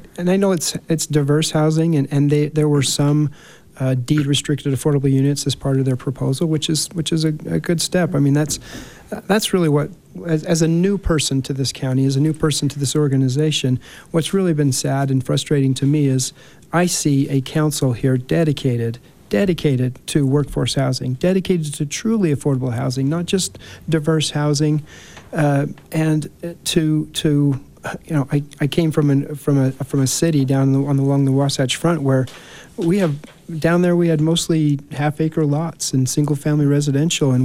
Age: 40-59